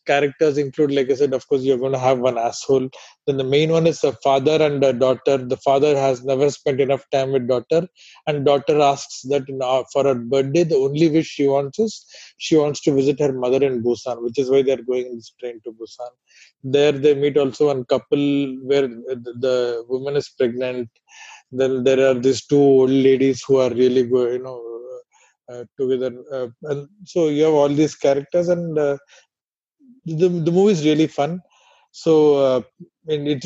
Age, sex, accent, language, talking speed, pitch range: 20-39, male, Indian, English, 200 wpm, 135-160 Hz